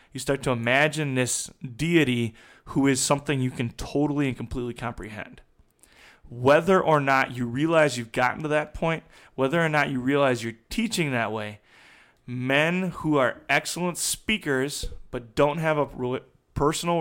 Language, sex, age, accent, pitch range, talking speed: English, male, 20-39, American, 125-150 Hz, 155 wpm